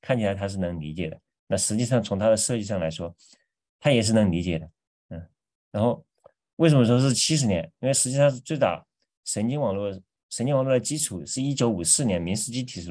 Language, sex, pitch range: Chinese, male, 95-130 Hz